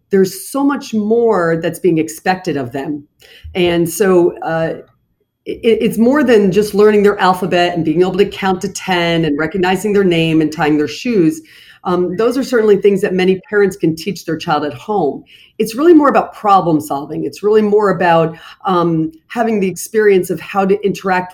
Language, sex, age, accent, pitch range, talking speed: English, female, 40-59, American, 165-200 Hz, 185 wpm